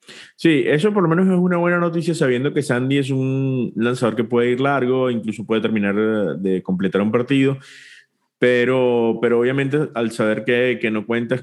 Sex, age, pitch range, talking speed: male, 30-49, 120-150 Hz, 190 wpm